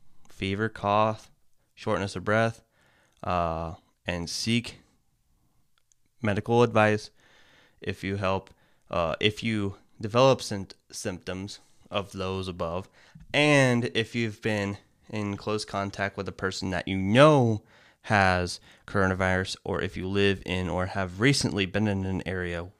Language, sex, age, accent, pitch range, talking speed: English, male, 20-39, American, 95-125 Hz, 125 wpm